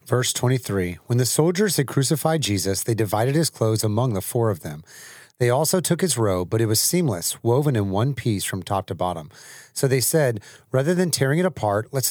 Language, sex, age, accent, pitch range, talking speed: English, male, 30-49, American, 105-140 Hz, 215 wpm